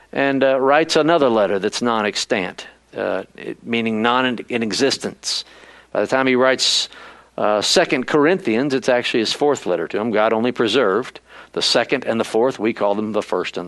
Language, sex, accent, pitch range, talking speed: English, male, American, 130-185 Hz, 170 wpm